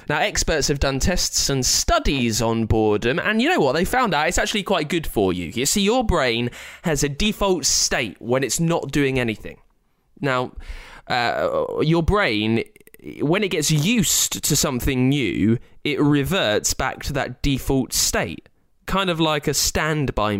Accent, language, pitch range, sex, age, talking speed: British, English, 120-180 Hz, male, 20-39, 170 wpm